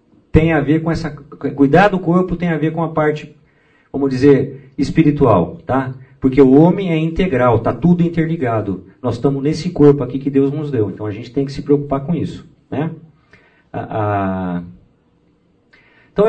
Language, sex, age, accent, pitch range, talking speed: Portuguese, male, 50-69, Brazilian, 135-165 Hz, 170 wpm